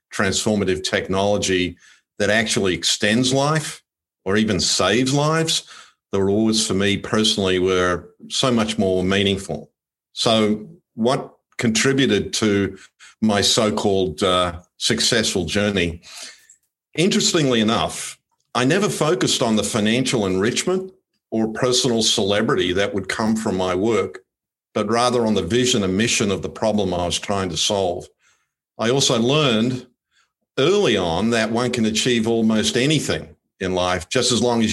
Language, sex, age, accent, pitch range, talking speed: English, male, 50-69, Australian, 100-125 Hz, 135 wpm